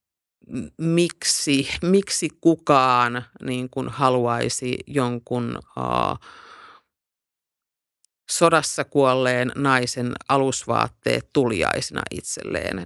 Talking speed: 65 wpm